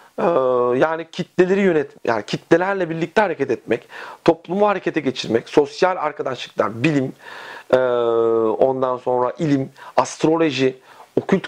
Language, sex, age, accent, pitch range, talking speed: Turkish, male, 40-59, native, 125-180 Hz, 100 wpm